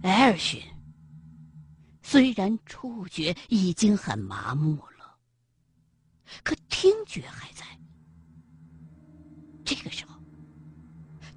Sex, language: female, Chinese